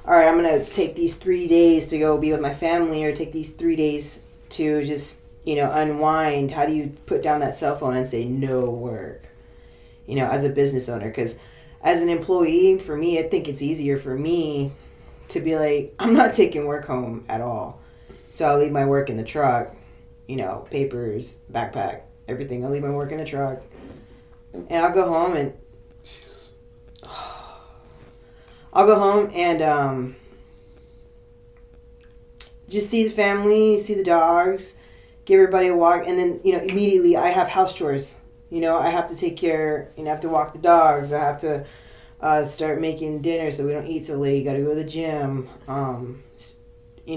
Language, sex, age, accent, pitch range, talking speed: English, female, 20-39, American, 130-165 Hz, 190 wpm